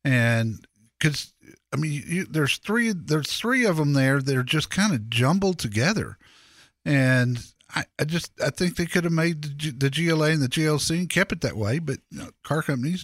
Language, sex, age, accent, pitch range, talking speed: English, male, 50-69, American, 120-165 Hz, 210 wpm